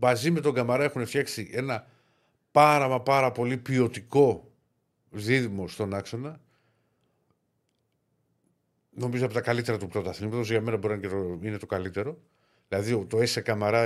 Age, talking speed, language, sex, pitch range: 50-69, 140 wpm, Greek, male, 100-130 Hz